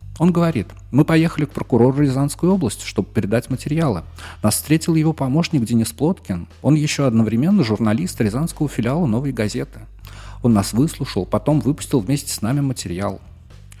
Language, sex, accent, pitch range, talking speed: Russian, male, native, 100-150 Hz, 150 wpm